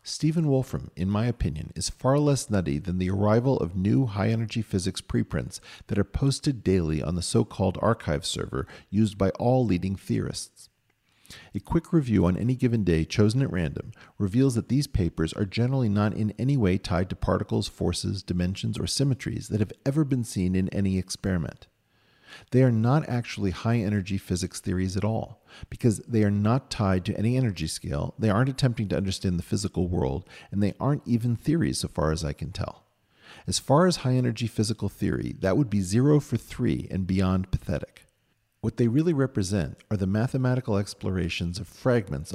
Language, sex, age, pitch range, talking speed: English, male, 50-69, 95-120 Hz, 185 wpm